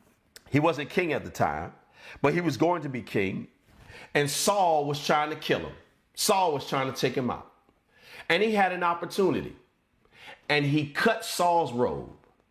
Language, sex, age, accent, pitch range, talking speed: English, male, 40-59, American, 145-215 Hz, 175 wpm